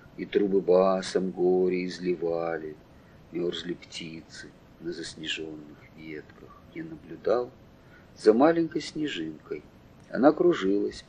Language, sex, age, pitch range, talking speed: English, male, 40-59, 95-145 Hz, 90 wpm